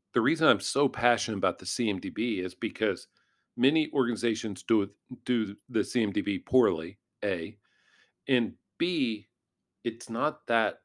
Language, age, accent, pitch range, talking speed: English, 50-69, American, 105-120 Hz, 125 wpm